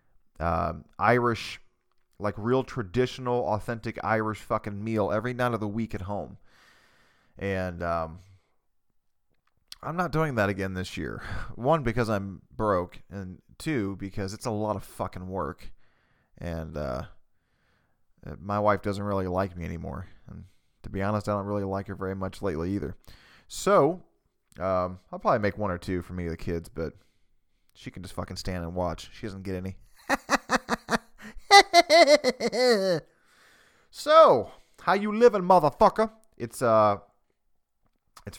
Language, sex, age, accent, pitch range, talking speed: English, male, 20-39, American, 95-120 Hz, 145 wpm